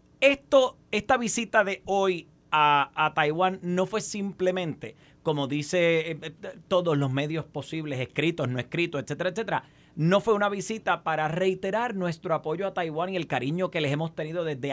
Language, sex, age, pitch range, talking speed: Spanish, male, 30-49, 150-205 Hz, 165 wpm